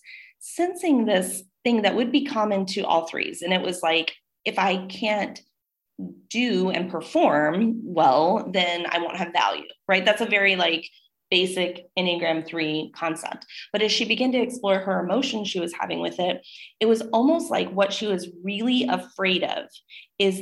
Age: 30-49